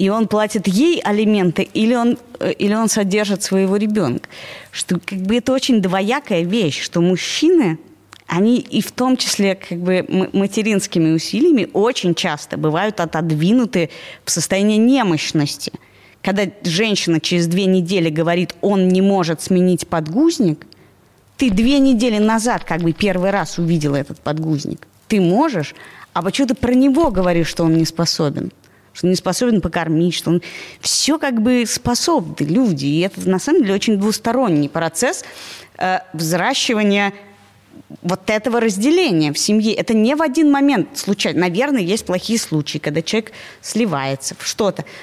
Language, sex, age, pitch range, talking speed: Russian, female, 20-39, 170-230 Hz, 140 wpm